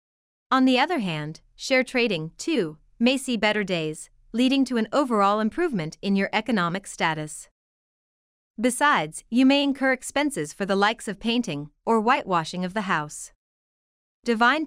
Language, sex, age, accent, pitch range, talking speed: English, female, 30-49, American, 175-245 Hz, 145 wpm